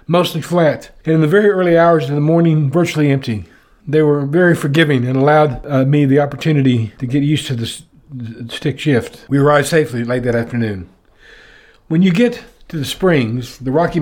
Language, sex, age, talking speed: English, male, 60-79, 190 wpm